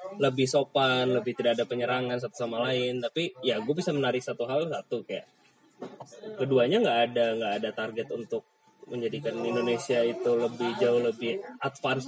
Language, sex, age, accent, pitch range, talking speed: Indonesian, male, 20-39, native, 120-155 Hz, 160 wpm